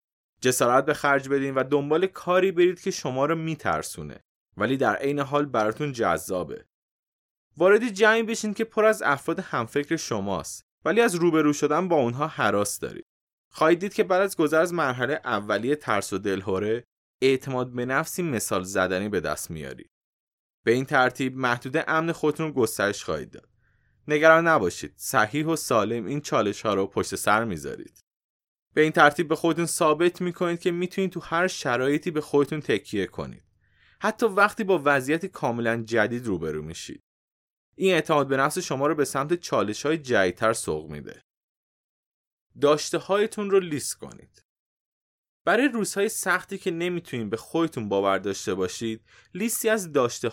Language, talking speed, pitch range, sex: Persian, 155 wpm, 115-170 Hz, male